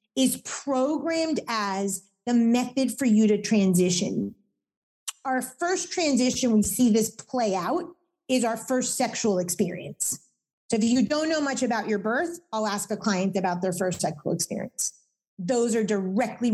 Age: 40-59